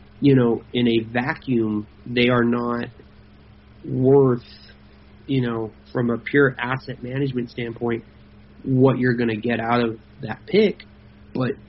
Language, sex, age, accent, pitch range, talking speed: English, male, 30-49, American, 115-150 Hz, 140 wpm